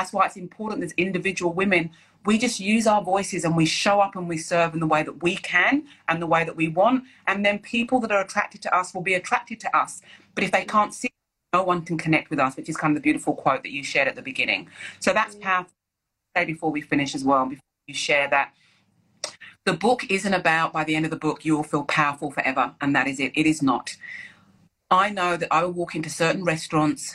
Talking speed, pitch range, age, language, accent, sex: 245 wpm, 150-185 Hz, 30-49, English, British, female